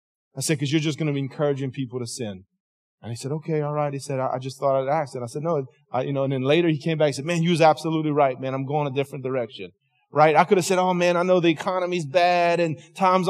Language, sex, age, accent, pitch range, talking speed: English, male, 30-49, American, 155-200 Hz, 285 wpm